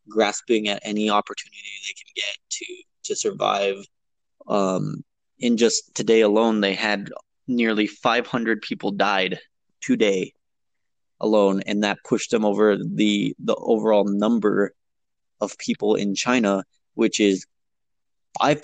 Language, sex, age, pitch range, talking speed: English, male, 20-39, 100-110 Hz, 125 wpm